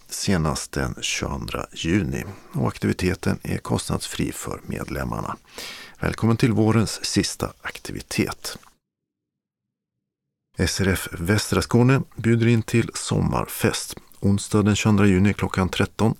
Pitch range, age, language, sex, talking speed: 90-115 Hz, 50-69, Swedish, male, 100 wpm